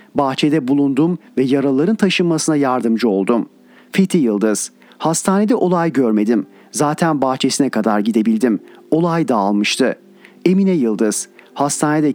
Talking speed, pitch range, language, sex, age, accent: 105 wpm, 135-180 Hz, Turkish, male, 40-59, native